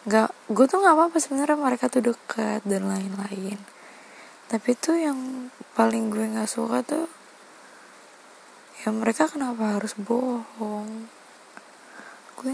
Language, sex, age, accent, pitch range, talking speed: Indonesian, female, 20-39, native, 205-250 Hz, 120 wpm